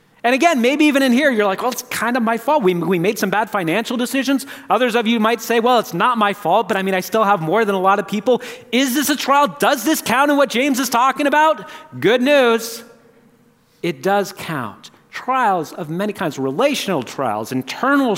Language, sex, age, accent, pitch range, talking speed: English, male, 40-59, American, 170-260 Hz, 225 wpm